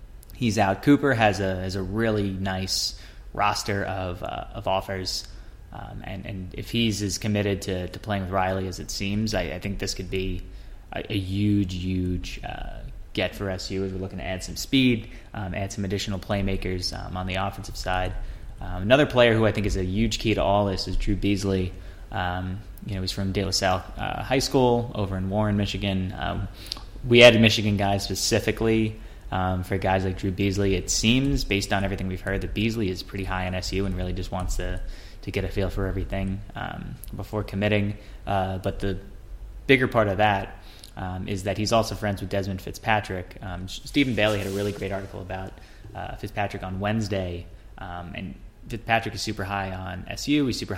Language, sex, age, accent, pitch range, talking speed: English, male, 20-39, American, 95-105 Hz, 200 wpm